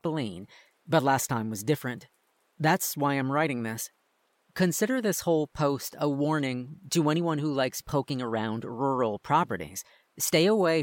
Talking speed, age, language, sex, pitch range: 145 wpm, 40-59, English, female, 120-155 Hz